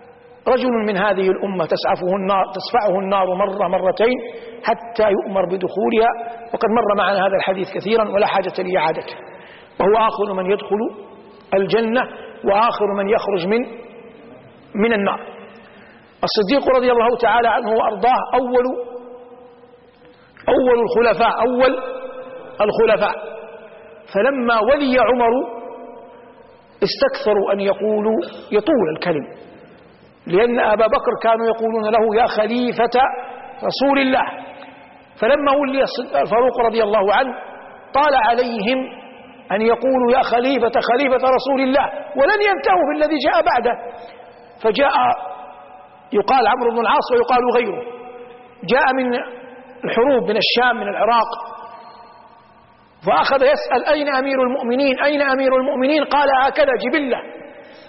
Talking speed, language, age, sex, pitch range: 110 wpm, Arabic, 50-69, male, 215-255 Hz